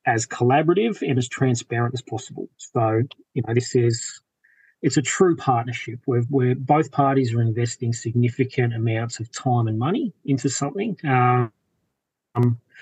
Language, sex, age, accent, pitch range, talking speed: English, male, 30-49, Australian, 120-140 Hz, 140 wpm